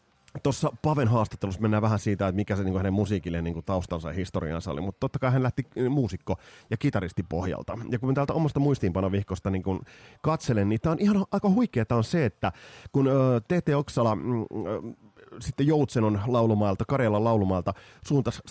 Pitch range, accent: 100-140 Hz, native